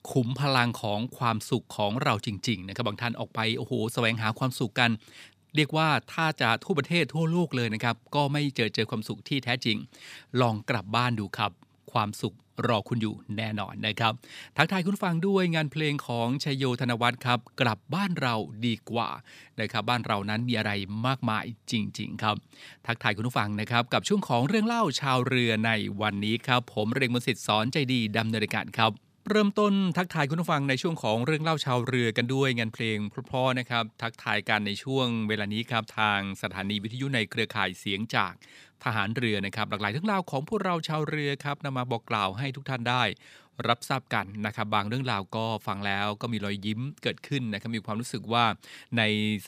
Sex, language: male, Thai